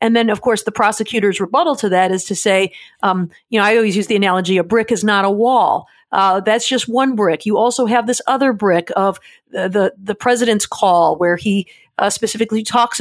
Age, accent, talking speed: 50-69, American, 220 wpm